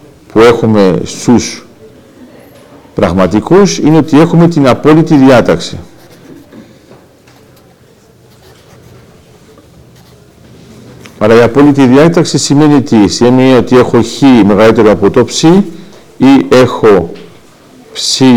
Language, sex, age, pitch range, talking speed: Greek, male, 50-69, 105-150 Hz, 85 wpm